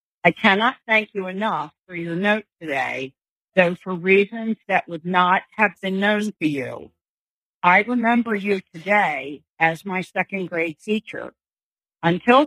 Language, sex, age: English, female, 50-69